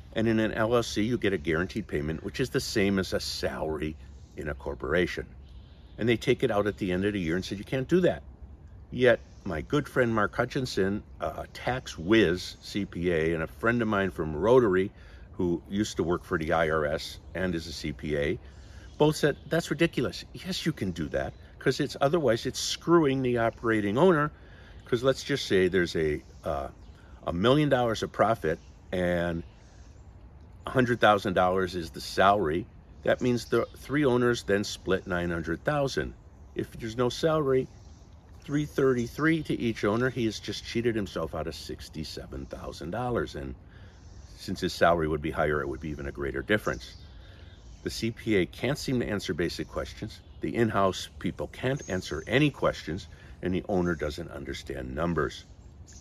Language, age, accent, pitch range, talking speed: English, 60-79, American, 85-115 Hz, 165 wpm